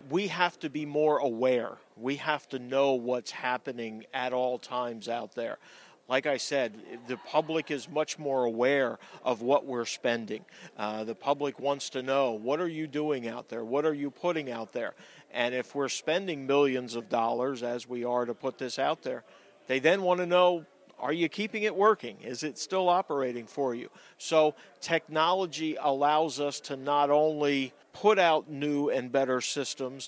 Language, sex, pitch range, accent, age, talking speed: English, male, 125-150 Hz, American, 50-69, 185 wpm